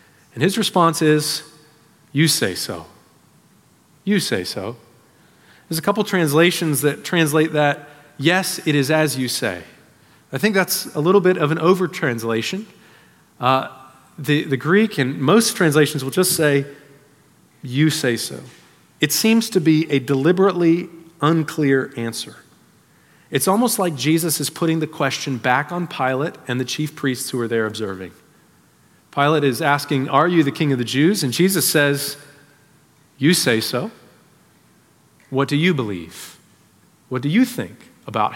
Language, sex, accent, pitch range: English, male, American, 135-175 Hz